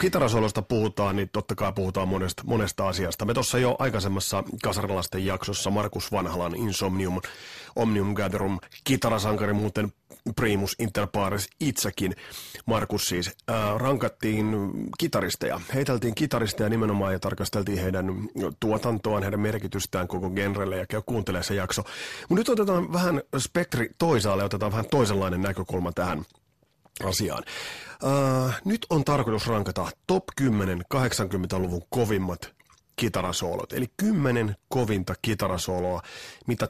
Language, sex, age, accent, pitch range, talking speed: Finnish, male, 30-49, native, 95-120 Hz, 120 wpm